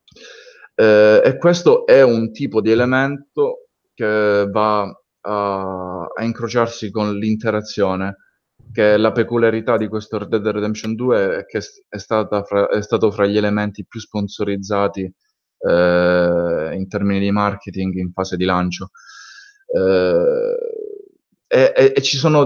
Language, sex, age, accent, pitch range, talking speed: Italian, male, 20-39, native, 100-125 Hz, 130 wpm